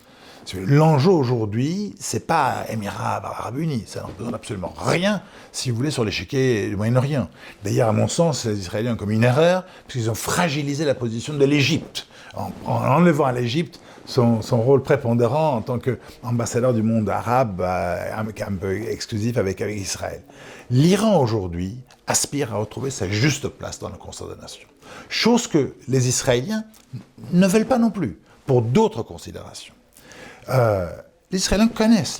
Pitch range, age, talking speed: 105-150 Hz, 50-69, 165 wpm